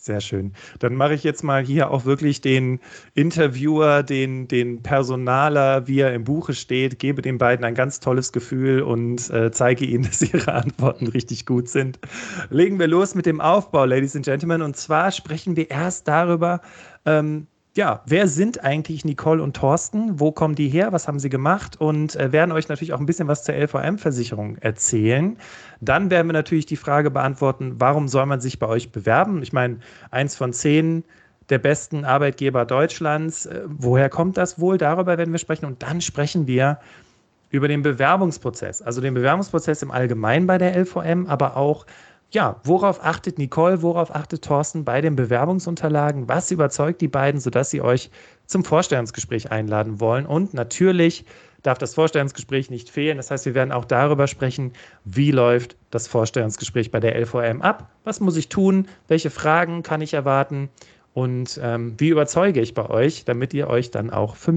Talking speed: 175 wpm